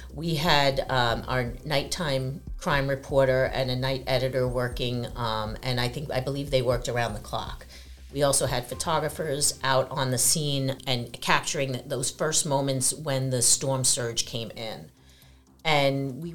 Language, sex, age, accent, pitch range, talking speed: English, female, 40-59, American, 125-150 Hz, 160 wpm